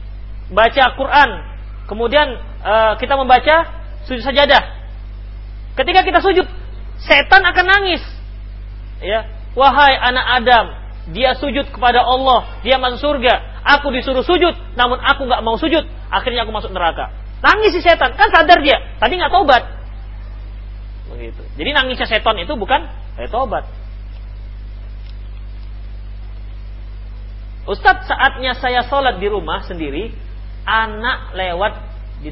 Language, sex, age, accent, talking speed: Indonesian, male, 40-59, native, 120 wpm